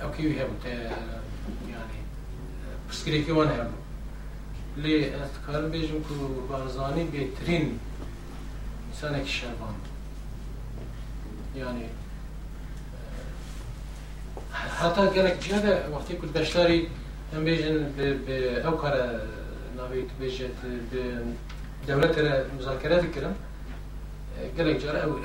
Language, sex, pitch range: English, male, 130-155 Hz